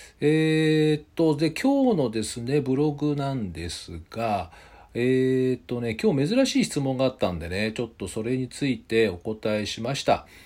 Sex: male